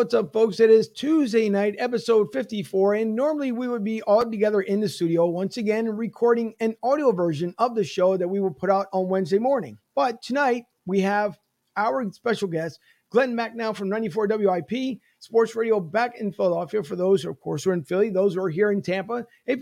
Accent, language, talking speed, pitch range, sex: American, English, 210 wpm, 190-230 Hz, male